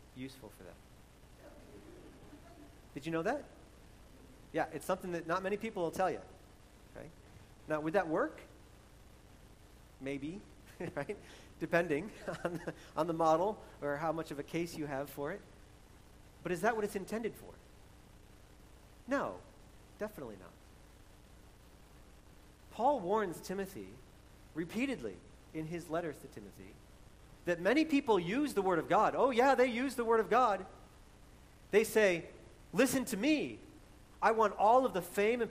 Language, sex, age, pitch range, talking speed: English, male, 40-59, 145-215 Hz, 145 wpm